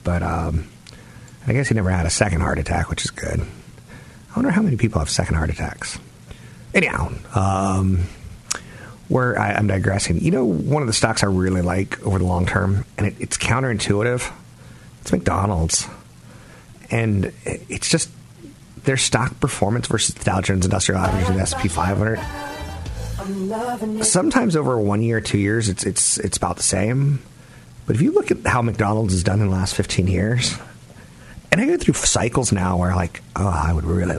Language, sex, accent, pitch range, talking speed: English, male, American, 90-120 Hz, 180 wpm